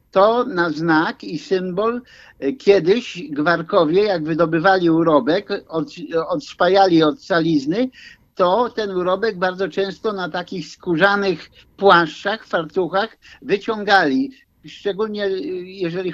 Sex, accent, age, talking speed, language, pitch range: male, native, 50-69, 95 wpm, Polish, 165-205 Hz